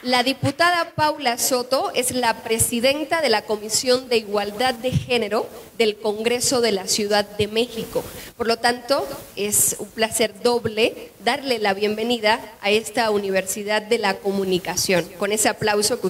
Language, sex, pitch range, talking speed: Spanish, female, 215-250 Hz, 155 wpm